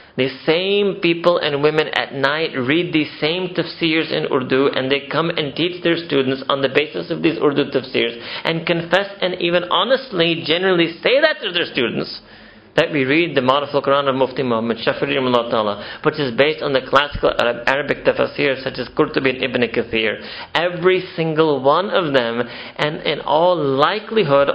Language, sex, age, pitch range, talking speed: English, male, 40-59, 120-165 Hz, 180 wpm